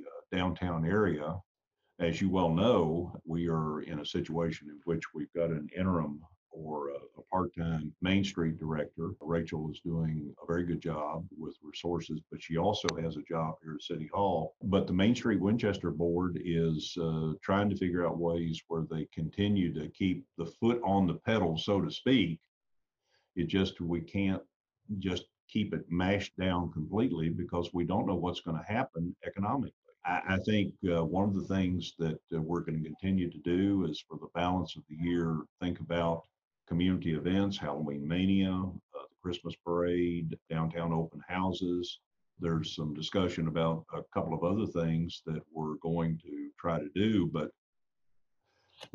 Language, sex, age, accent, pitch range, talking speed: English, male, 50-69, American, 80-95 Hz, 175 wpm